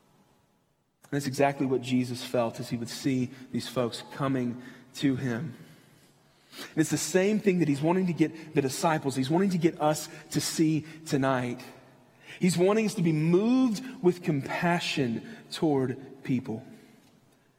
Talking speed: 145 wpm